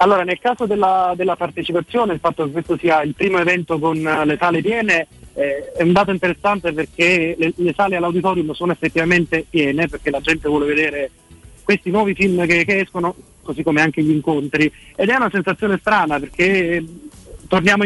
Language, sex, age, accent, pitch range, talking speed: Italian, male, 30-49, native, 155-190 Hz, 180 wpm